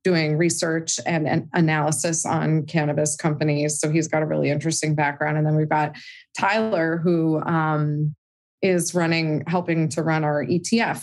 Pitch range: 150-180 Hz